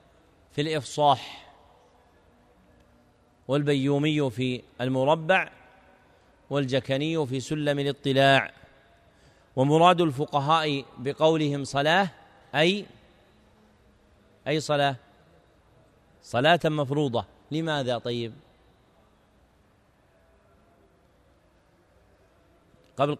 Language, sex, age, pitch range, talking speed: Arabic, male, 40-59, 135-160 Hz, 55 wpm